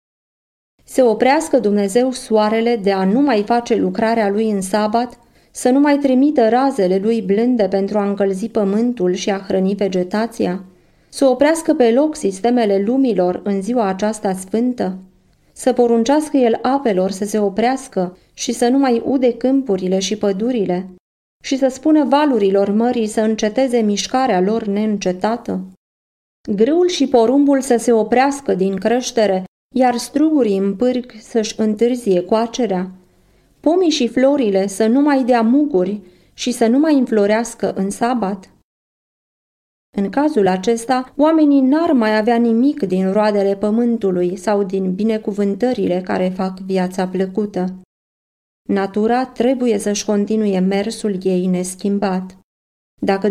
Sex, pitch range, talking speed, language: female, 195-250 Hz, 135 wpm, Romanian